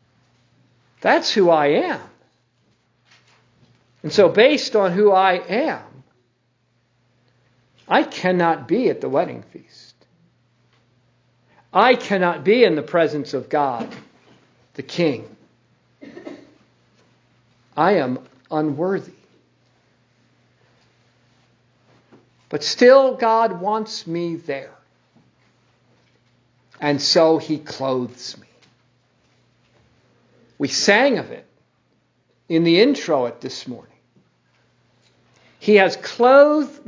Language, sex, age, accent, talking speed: English, male, 50-69, American, 90 wpm